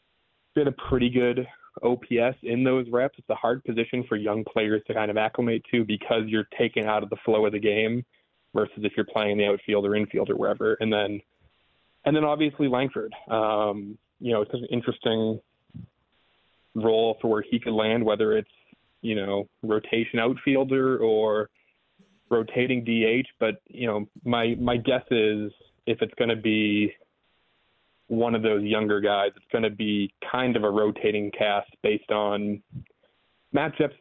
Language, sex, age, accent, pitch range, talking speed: English, male, 20-39, American, 105-125 Hz, 170 wpm